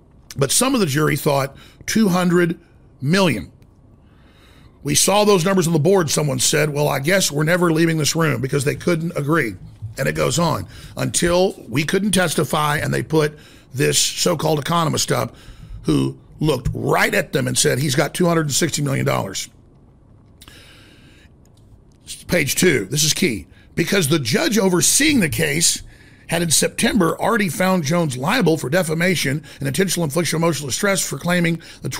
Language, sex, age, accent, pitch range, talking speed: English, male, 50-69, American, 140-180 Hz, 160 wpm